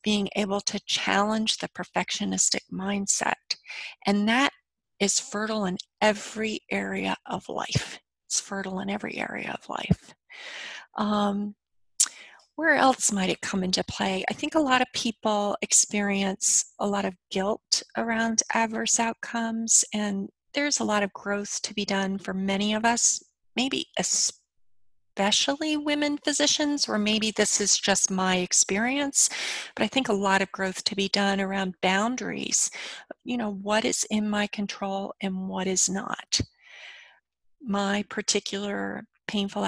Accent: American